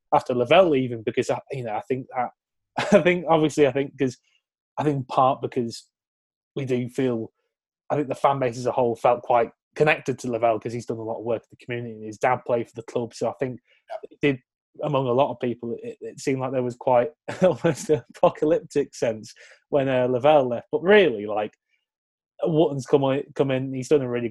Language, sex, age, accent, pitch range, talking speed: English, male, 20-39, British, 125-150 Hz, 220 wpm